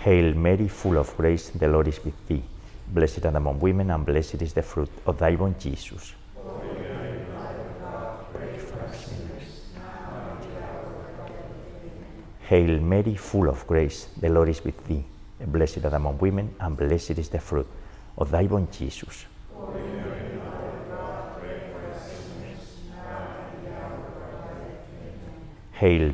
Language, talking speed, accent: English, 110 wpm, Spanish